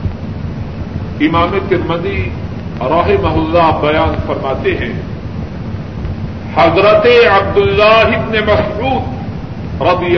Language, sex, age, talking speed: Urdu, male, 50-69, 75 wpm